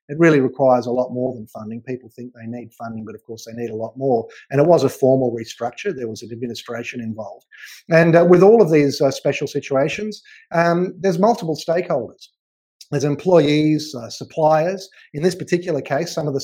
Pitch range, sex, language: 130-170 Hz, male, English